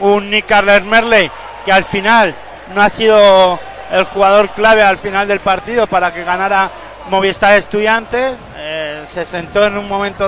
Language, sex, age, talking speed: Spanish, male, 30-49, 160 wpm